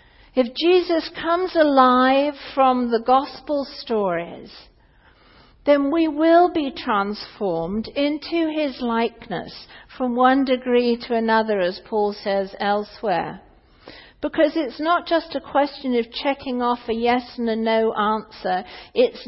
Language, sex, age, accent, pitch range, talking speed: English, female, 50-69, British, 240-295 Hz, 130 wpm